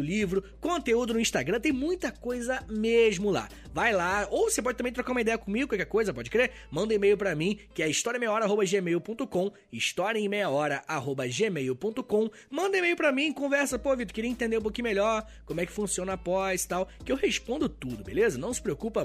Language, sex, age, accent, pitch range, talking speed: Portuguese, male, 20-39, Brazilian, 160-240 Hz, 200 wpm